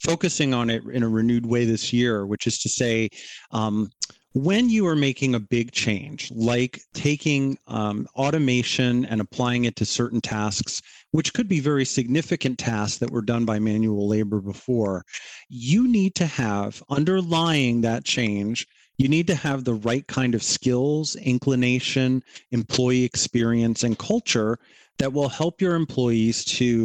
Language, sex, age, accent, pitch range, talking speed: English, male, 40-59, American, 115-140 Hz, 160 wpm